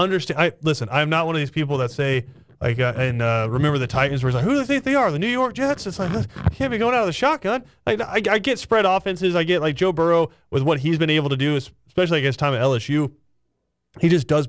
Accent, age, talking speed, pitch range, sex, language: American, 30-49, 280 wpm, 125-165 Hz, male, English